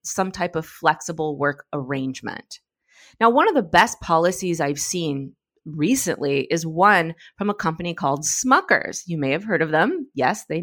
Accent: American